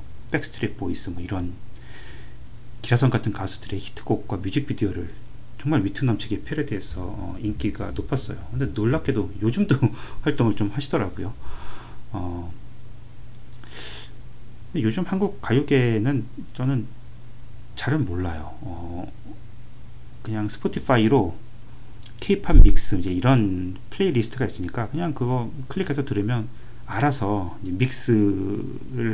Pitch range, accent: 105-130 Hz, native